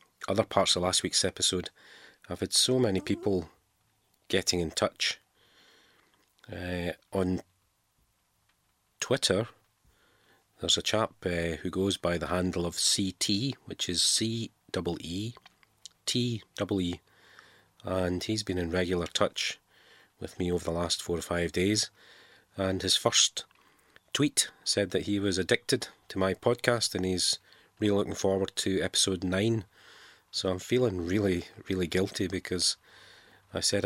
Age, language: 30-49, English